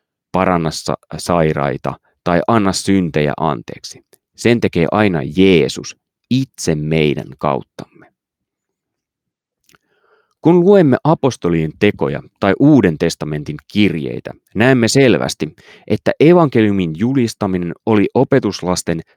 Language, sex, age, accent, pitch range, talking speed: Finnish, male, 30-49, native, 80-110 Hz, 90 wpm